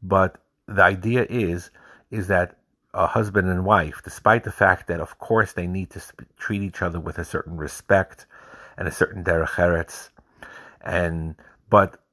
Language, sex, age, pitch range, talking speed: English, male, 50-69, 85-105 Hz, 165 wpm